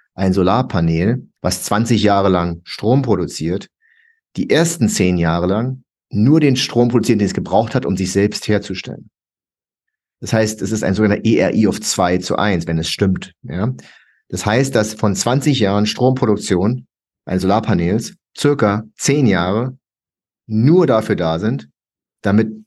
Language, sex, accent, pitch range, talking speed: German, male, German, 100-135 Hz, 150 wpm